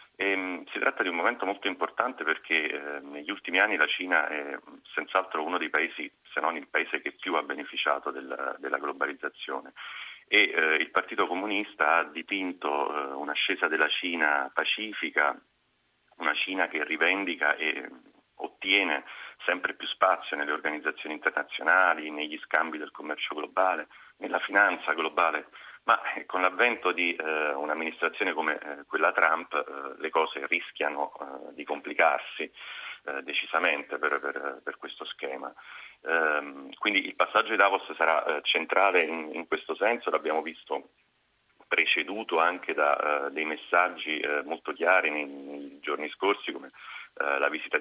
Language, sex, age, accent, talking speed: Italian, male, 40-59, native, 130 wpm